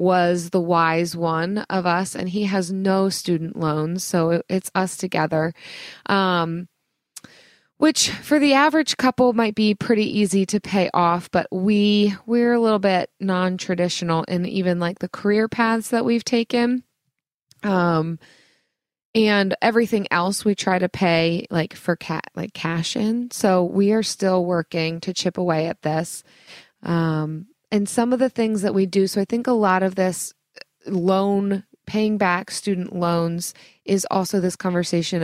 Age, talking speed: 20-39, 160 wpm